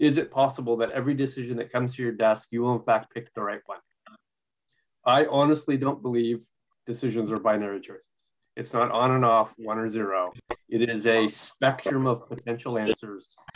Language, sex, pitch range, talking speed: English, male, 115-135 Hz, 185 wpm